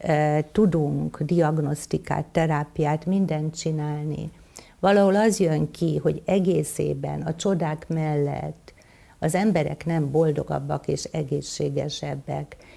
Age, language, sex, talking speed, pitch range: 60-79, Hungarian, female, 95 wpm, 150-175 Hz